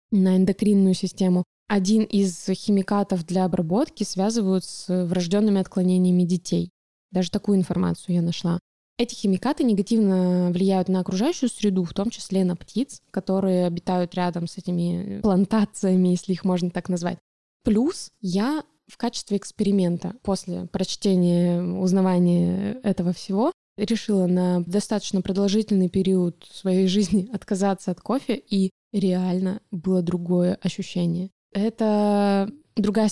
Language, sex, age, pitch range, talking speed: Russian, female, 20-39, 185-210 Hz, 125 wpm